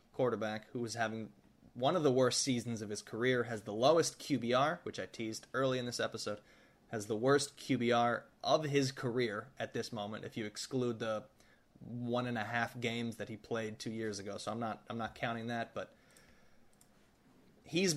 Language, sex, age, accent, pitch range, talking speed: English, male, 20-39, American, 115-135 Hz, 190 wpm